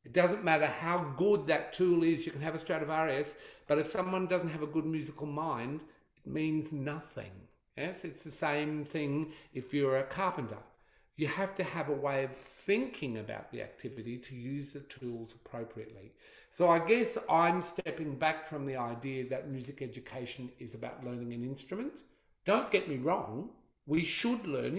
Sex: male